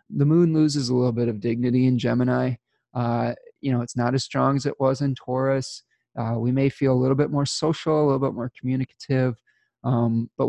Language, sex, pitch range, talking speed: English, male, 120-140 Hz, 215 wpm